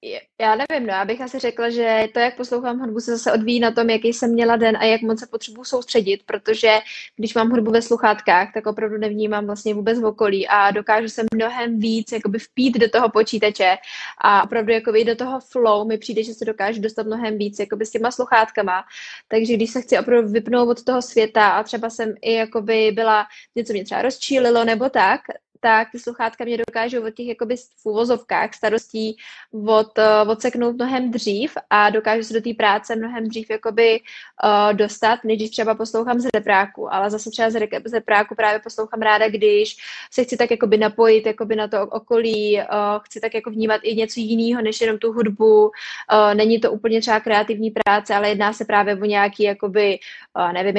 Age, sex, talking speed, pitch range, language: 10-29, female, 195 wpm, 210-230 Hz, Czech